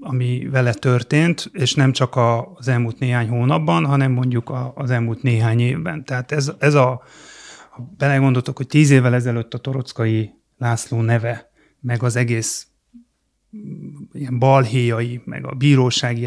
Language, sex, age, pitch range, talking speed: Hungarian, male, 30-49, 125-140 Hz, 135 wpm